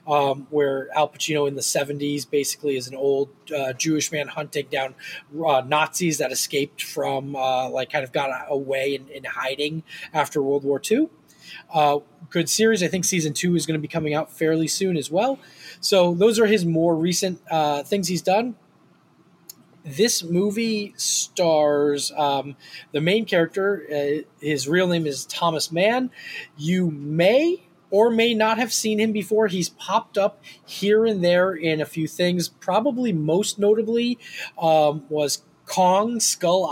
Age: 20-39